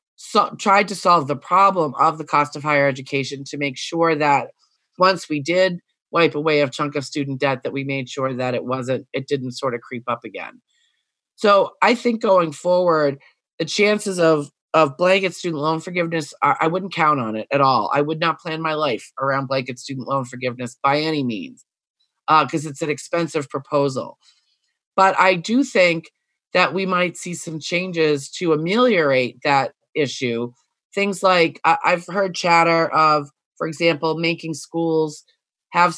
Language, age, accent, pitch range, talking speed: English, 30-49, American, 140-175 Hz, 175 wpm